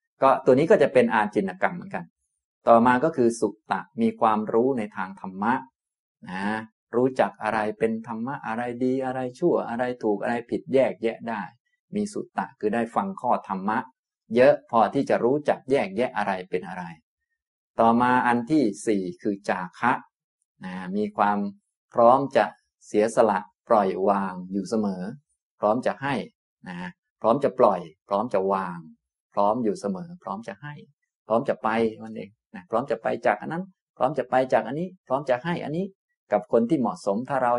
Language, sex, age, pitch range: Thai, male, 20-39, 100-150 Hz